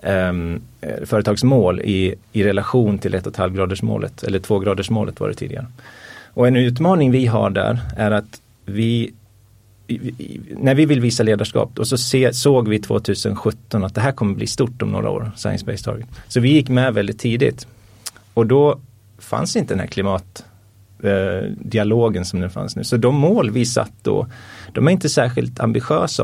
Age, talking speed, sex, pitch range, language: 30-49, 175 wpm, male, 105-120 Hz, Swedish